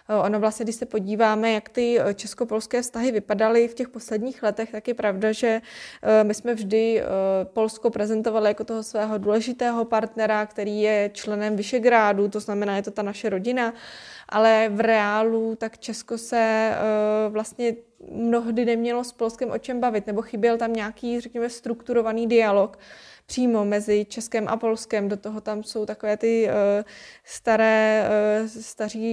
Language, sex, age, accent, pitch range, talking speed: Czech, female, 20-39, native, 210-235 Hz, 150 wpm